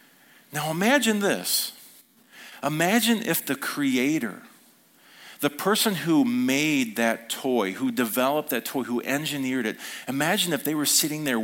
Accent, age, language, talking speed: American, 40-59, English, 135 wpm